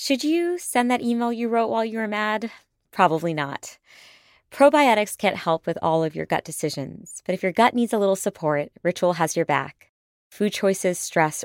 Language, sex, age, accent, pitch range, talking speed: English, female, 20-39, American, 150-195 Hz, 195 wpm